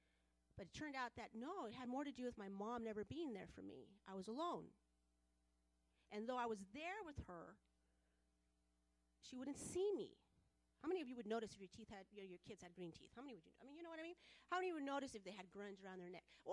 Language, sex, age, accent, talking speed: English, female, 40-59, American, 270 wpm